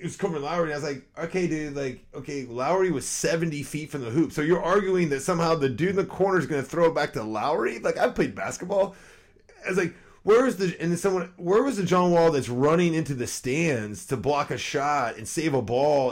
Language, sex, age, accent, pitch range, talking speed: English, male, 30-49, American, 125-170 Hz, 230 wpm